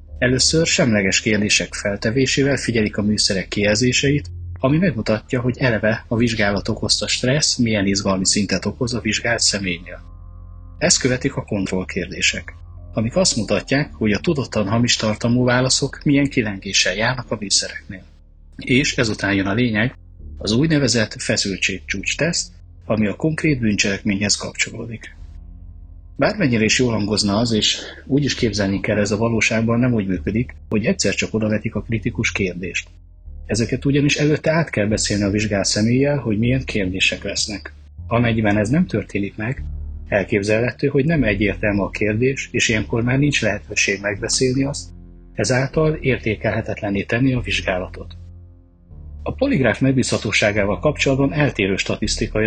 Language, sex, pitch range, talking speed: Hungarian, male, 95-125 Hz, 140 wpm